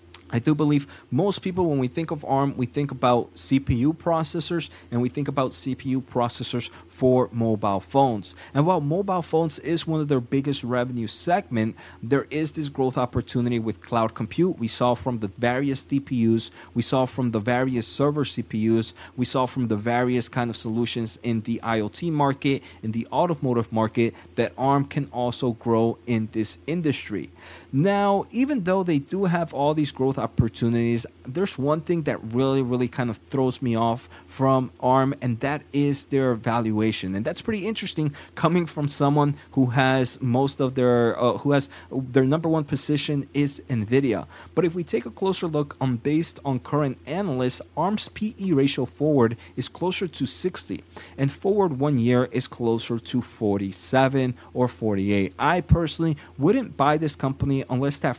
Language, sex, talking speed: English, male, 170 wpm